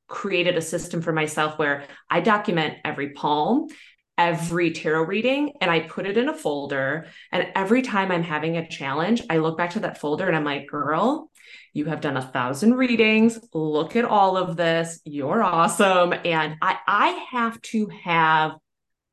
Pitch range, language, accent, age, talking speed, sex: 160-225 Hz, English, American, 20-39, 175 wpm, female